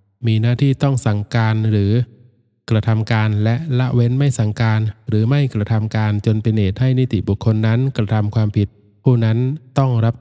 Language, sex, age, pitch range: Thai, male, 20-39, 110-125 Hz